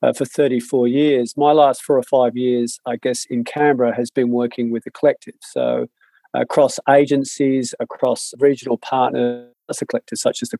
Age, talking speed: 40-59, 185 wpm